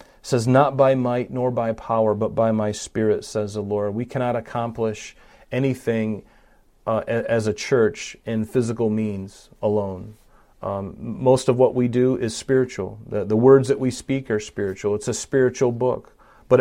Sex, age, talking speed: male, 40-59, 175 wpm